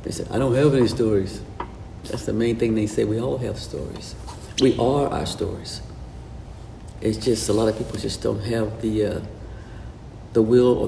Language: English